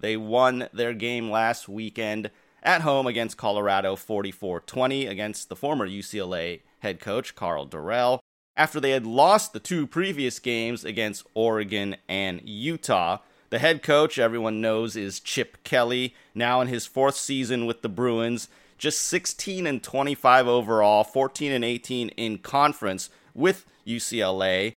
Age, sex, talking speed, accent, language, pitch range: 30-49, male, 135 wpm, American, English, 110-135 Hz